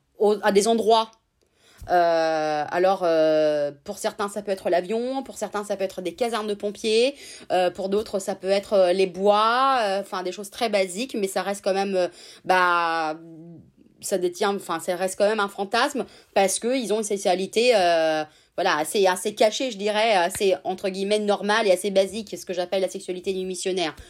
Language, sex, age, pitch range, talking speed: French, female, 30-49, 185-220 Hz, 195 wpm